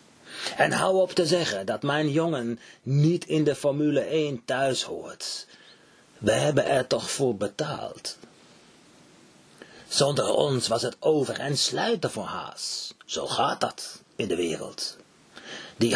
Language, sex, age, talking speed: Dutch, male, 40-59, 140 wpm